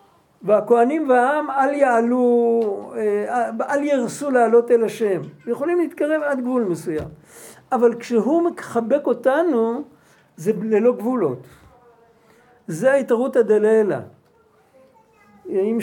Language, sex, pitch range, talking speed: Hebrew, male, 200-255 Hz, 95 wpm